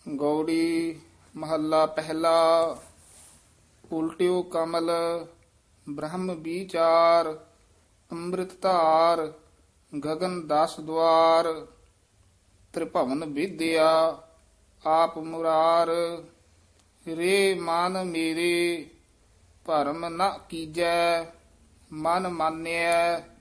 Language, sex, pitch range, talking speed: Punjabi, male, 145-170 Hz, 60 wpm